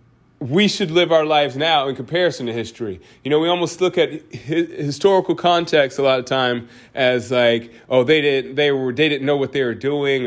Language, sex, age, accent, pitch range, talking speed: English, male, 30-49, American, 130-170 Hz, 205 wpm